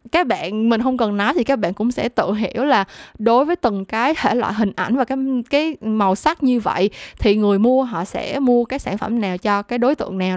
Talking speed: 255 wpm